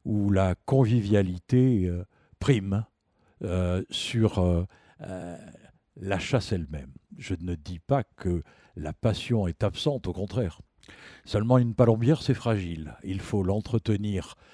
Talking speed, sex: 130 wpm, male